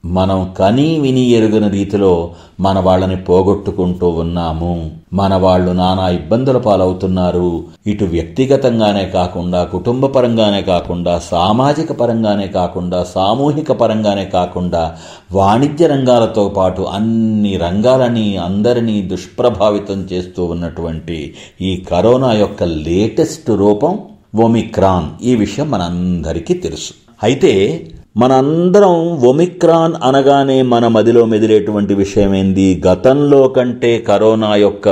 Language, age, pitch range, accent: Telugu, 50-69, 90-115 Hz, native